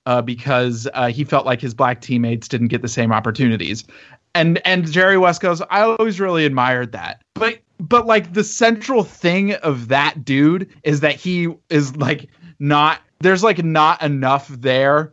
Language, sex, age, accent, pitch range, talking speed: English, male, 30-49, American, 130-175 Hz, 180 wpm